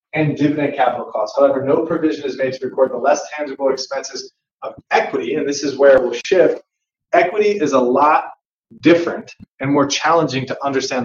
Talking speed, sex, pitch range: 180 wpm, male, 130-170 Hz